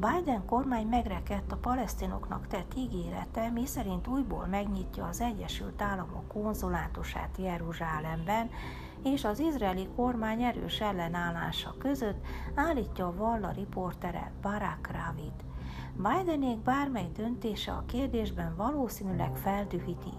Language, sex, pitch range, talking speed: Hungarian, female, 170-230 Hz, 110 wpm